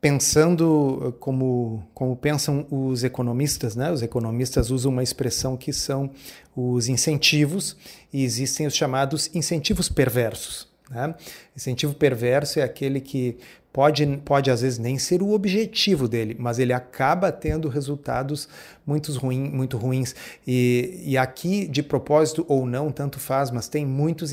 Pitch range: 125-150 Hz